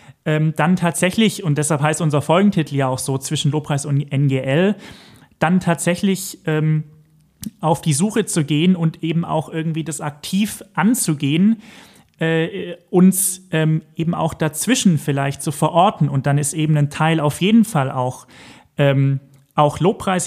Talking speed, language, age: 150 wpm, German, 30-49